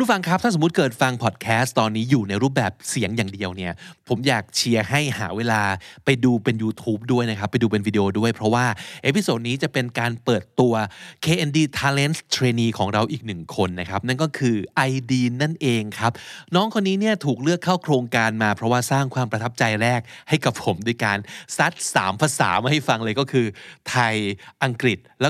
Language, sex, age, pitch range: Thai, male, 20-39, 115-160 Hz